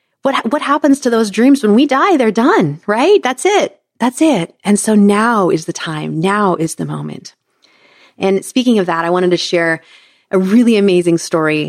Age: 30-49